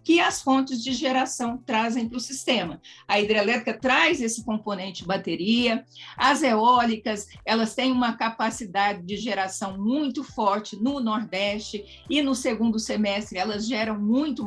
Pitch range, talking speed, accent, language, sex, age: 205-260 Hz, 145 wpm, Brazilian, Portuguese, female, 50-69